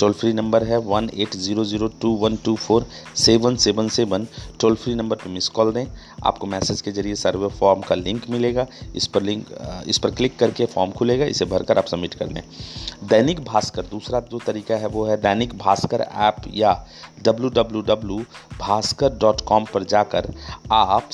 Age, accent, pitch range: 40-59, native, 95-115 Hz